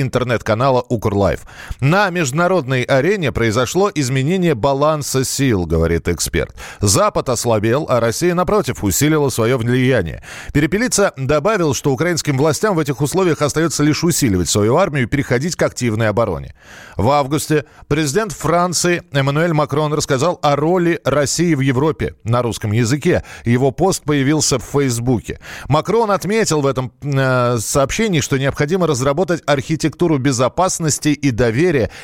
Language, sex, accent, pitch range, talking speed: Russian, male, native, 120-155 Hz, 135 wpm